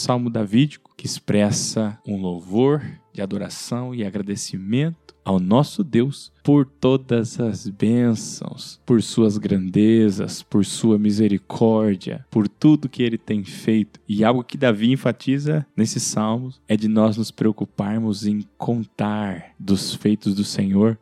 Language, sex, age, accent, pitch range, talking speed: Portuguese, male, 10-29, Brazilian, 105-130 Hz, 135 wpm